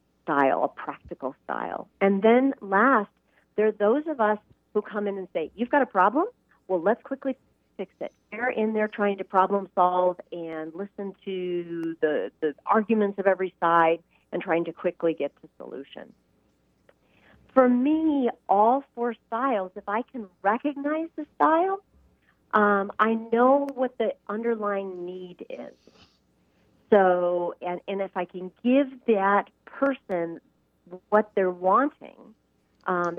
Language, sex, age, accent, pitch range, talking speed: English, female, 40-59, American, 180-235 Hz, 145 wpm